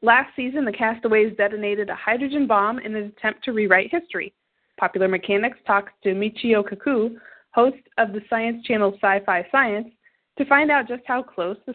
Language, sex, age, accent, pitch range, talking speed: English, female, 20-39, American, 195-250 Hz, 175 wpm